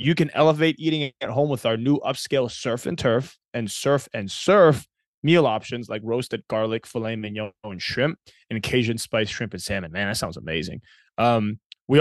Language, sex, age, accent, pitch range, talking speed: English, male, 20-39, American, 110-135 Hz, 190 wpm